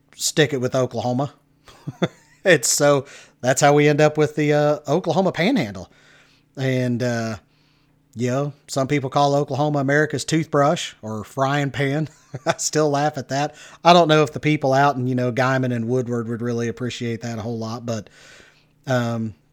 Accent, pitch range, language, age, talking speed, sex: American, 120-145 Hz, English, 40-59, 170 wpm, male